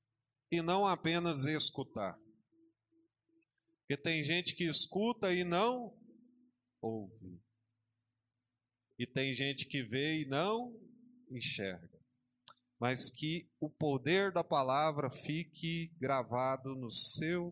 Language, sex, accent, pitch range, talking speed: Portuguese, male, Brazilian, 145-205 Hz, 105 wpm